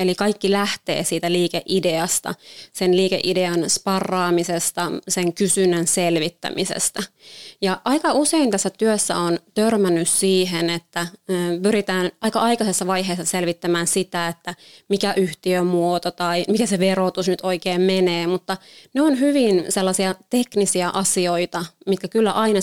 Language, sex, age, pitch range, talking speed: Finnish, female, 20-39, 175-205 Hz, 120 wpm